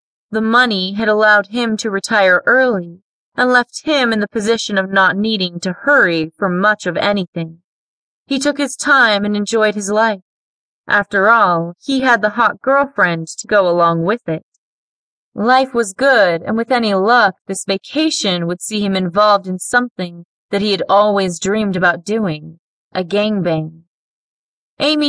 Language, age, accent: English, 30-49, American